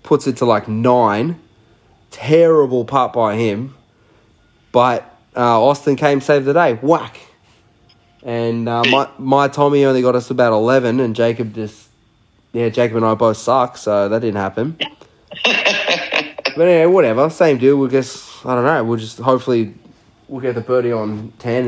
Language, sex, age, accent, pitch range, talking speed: English, male, 20-39, Australian, 115-150 Hz, 165 wpm